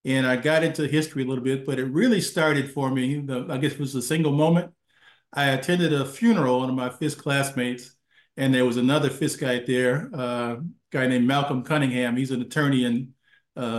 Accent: American